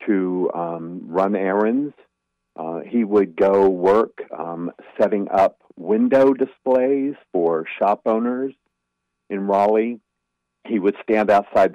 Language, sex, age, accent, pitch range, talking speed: English, male, 50-69, American, 90-115 Hz, 120 wpm